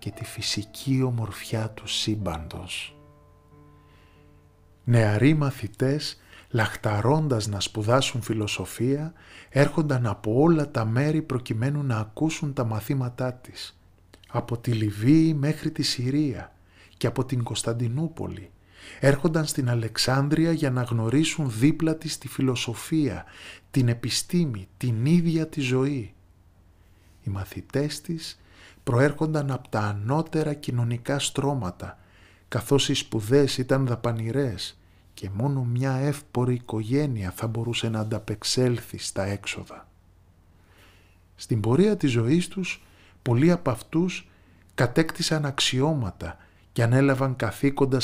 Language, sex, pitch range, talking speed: Greek, male, 95-140 Hz, 110 wpm